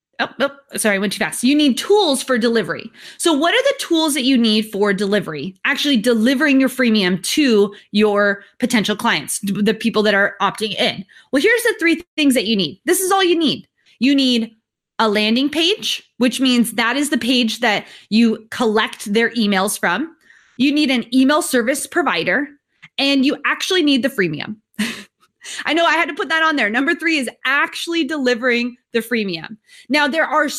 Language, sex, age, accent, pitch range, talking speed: English, female, 20-39, American, 220-295 Hz, 190 wpm